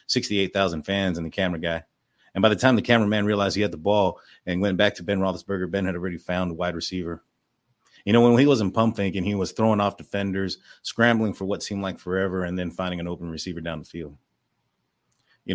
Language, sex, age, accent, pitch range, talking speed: English, male, 30-49, American, 95-115 Hz, 225 wpm